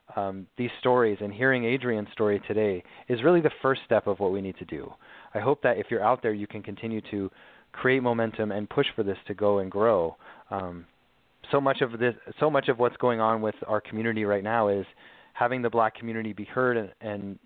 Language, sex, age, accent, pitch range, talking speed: English, male, 30-49, American, 100-120 Hz, 225 wpm